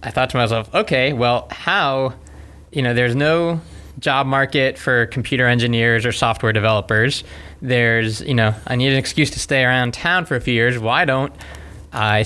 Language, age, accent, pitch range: English, 20-39, American, 110-130 Hz